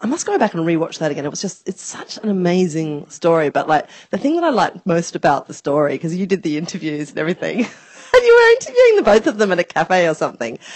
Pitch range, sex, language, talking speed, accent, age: 155-210 Hz, female, English, 255 wpm, Australian, 30-49